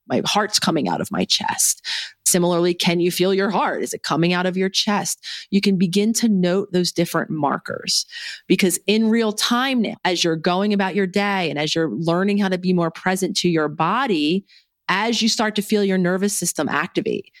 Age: 30-49